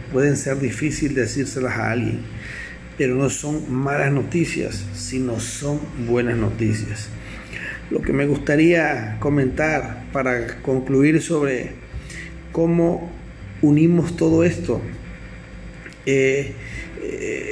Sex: male